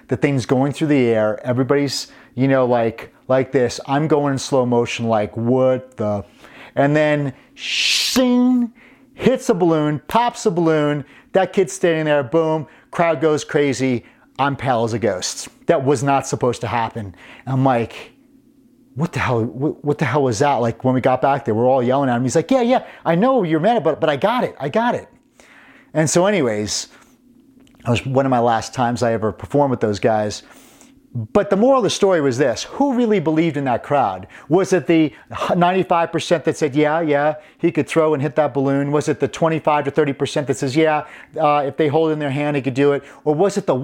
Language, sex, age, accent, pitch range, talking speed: English, male, 30-49, American, 130-190 Hz, 210 wpm